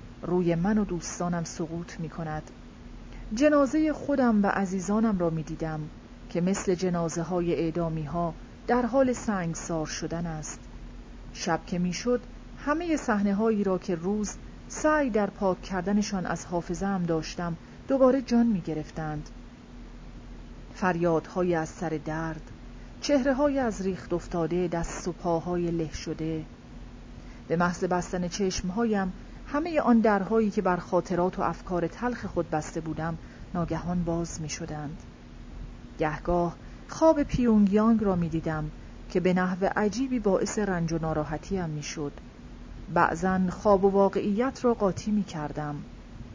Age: 40-59